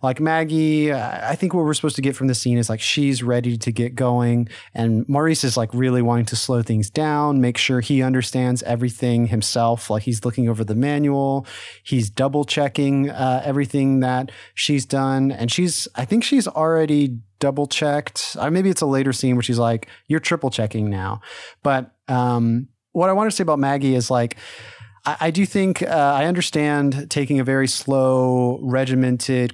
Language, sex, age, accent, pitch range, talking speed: English, male, 30-49, American, 120-145 Hz, 185 wpm